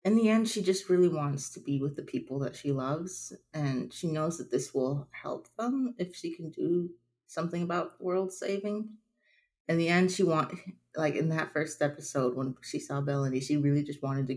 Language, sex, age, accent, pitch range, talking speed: English, female, 30-49, American, 135-185 Hz, 210 wpm